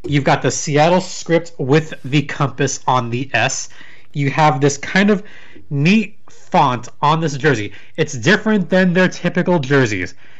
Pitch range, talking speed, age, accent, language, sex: 130-160 Hz, 155 wpm, 30-49, American, English, male